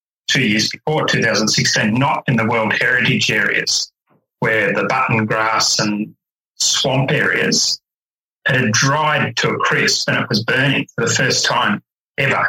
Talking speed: 150 wpm